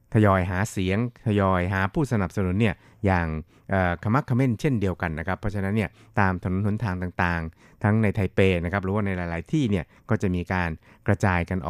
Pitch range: 90-110 Hz